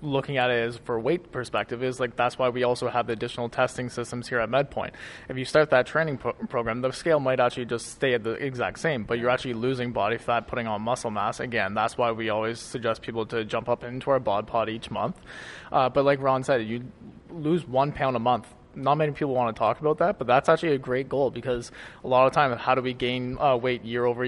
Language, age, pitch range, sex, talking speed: English, 20-39, 120-130 Hz, male, 250 wpm